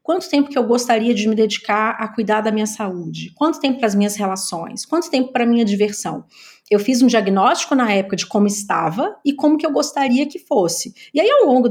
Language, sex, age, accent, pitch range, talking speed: Portuguese, female, 30-49, Brazilian, 200-280 Hz, 230 wpm